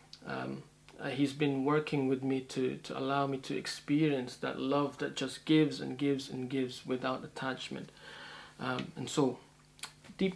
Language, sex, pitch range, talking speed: English, male, 130-155 Hz, 160 wpm